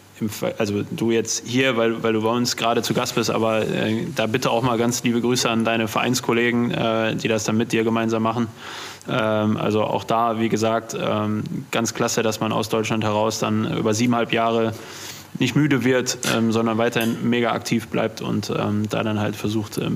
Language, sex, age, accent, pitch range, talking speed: German, male, 20-39, German, 110-120 Hz, 180 wpm